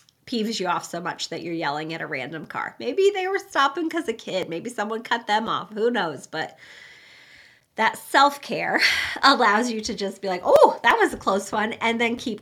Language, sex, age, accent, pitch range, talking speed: English, female, 30-49, American, 190-250 Hz, 210 wpm